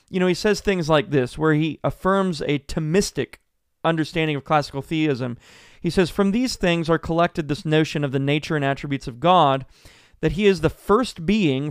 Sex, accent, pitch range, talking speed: male, American, 140-180 Hz, 195 wpm